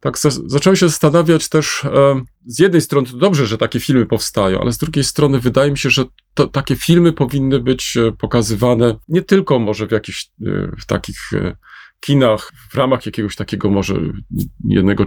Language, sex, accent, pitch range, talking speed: Polish, male, native, 115-150 Hz, 185 wpm